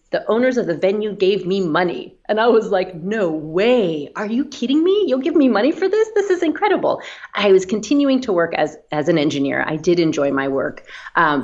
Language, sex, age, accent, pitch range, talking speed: English, female, 30-49, American, 150-205 Hz, 220 wpm